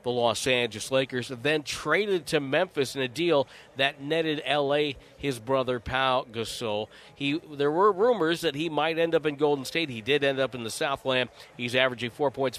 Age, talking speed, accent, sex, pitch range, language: 40-59, 195 wpm, American, male, 130-155 Hz, English